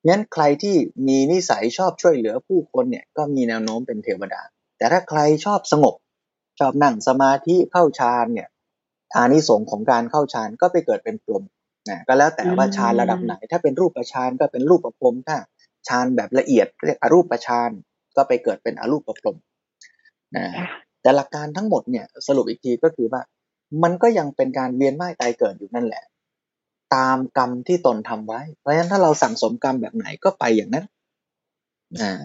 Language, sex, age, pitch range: Thai, male, 20-39, 125-200 Hz